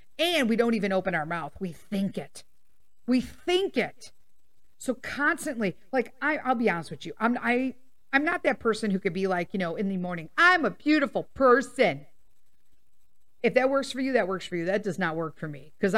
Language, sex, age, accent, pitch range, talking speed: English, female, 50-69, American, 180-235 Hz, 215 wpm